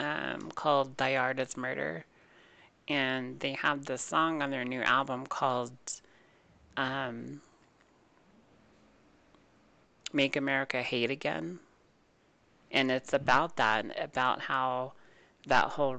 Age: 30-49